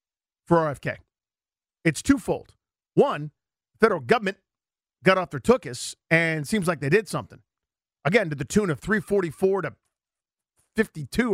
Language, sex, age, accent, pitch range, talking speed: English, male, 40-59, American, 135-200 Hz, 140 wpm